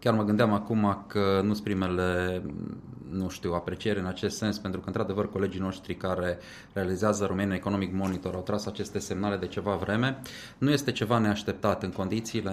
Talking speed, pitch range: 170 wpm, 90-110 Hz